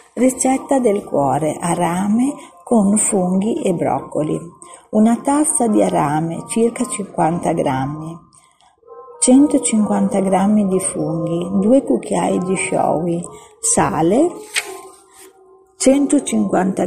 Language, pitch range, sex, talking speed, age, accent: English, 175-265 Hz, female, 90 wpm, 40-59, Italian